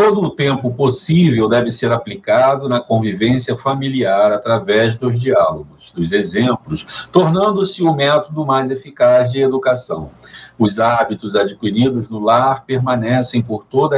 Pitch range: 120-155 Hz